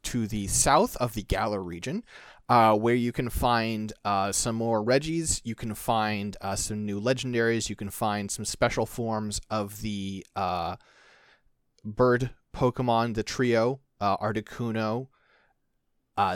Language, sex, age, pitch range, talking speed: English, male, 30-49, 105-140 Hz, 145 wpm